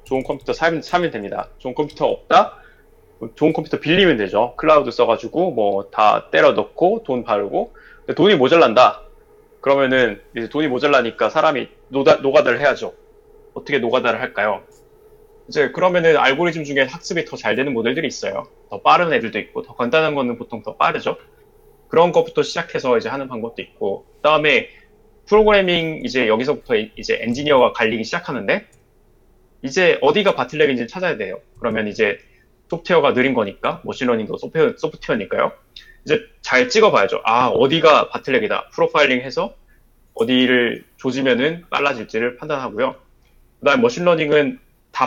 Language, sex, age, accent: Korean, male, 20-39, native